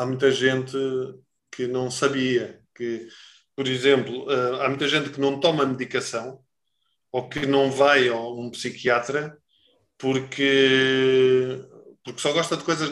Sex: male